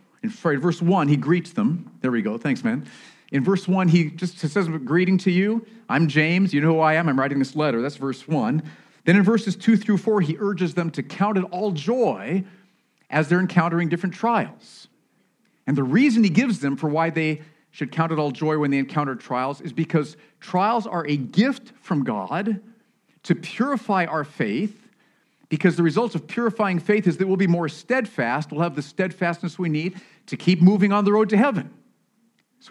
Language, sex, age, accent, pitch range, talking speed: English, male, 40-59, American, 150-205 Hz, 200 wpm